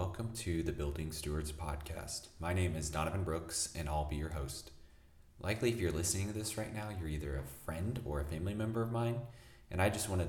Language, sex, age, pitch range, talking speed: English, male, 30-49, 75-85 Hz, 220 wpm